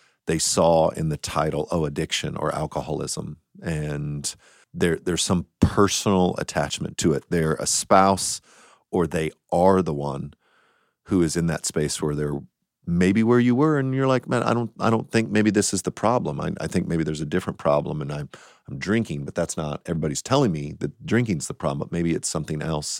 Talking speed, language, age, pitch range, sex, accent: 200 wpm, English, 40-59, 80-105 Hz, male, American